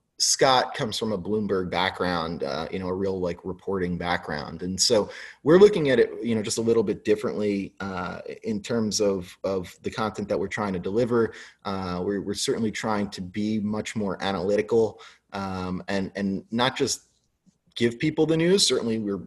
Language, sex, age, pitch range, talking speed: English, male, 30-49, 90-115 Hz, 185 wpm